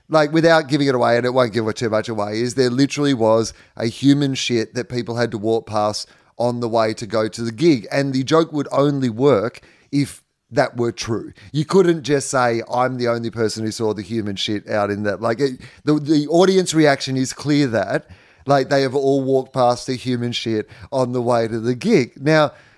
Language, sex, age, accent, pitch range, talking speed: English, male, 30-49, Australian, 115-145 Hz, 225 wpm